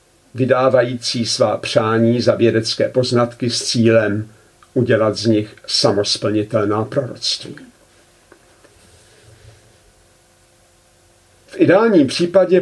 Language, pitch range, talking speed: Czech, 110-130 Hz, 75 wpm